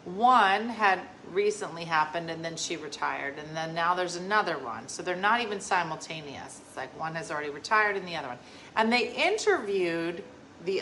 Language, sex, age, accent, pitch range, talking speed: English, female, 40-59, American, 170-240 Hz, 185 wpm